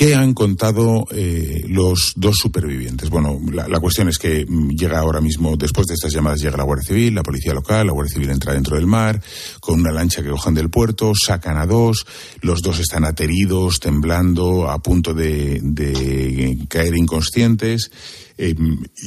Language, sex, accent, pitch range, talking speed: Spanish, male, Spanish, 75-105 Hz, 175 wpm